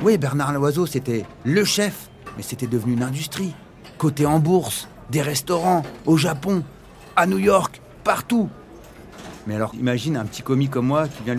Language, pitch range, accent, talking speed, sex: French, 100-155 Hz, French, 165 wpm, male